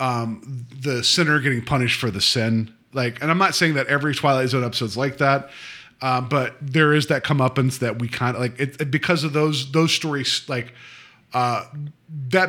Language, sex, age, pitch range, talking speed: English, male, 30-49, 125-155 Hz, 200 wpm